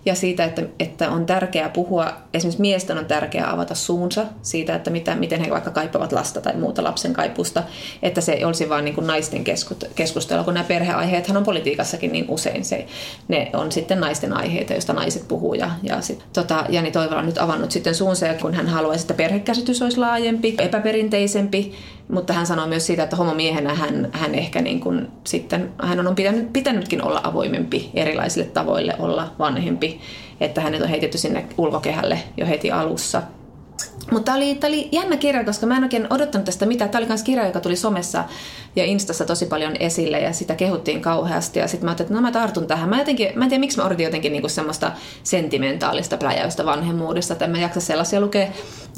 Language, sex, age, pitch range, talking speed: Finnish, female, 30-49, 165-210 Hz, 190 wpm